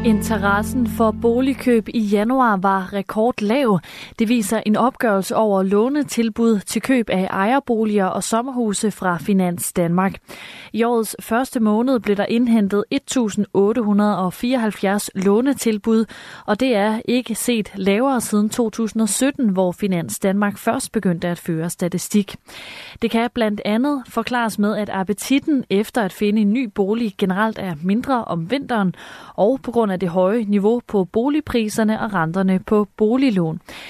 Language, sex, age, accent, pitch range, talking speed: Danish, female, 30-49, native, 195-230 Hz, 140 wpm